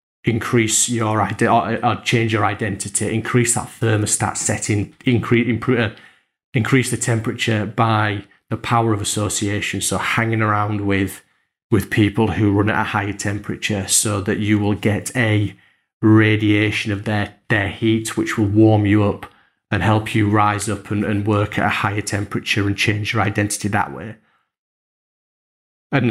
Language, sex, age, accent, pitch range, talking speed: English, male, 30-49, British, 105-115 Hz, 155 wpm